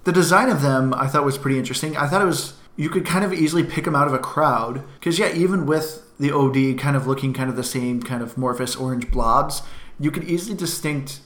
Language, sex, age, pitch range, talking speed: English, male, 20-39, 125-145 Hz, 245 wpm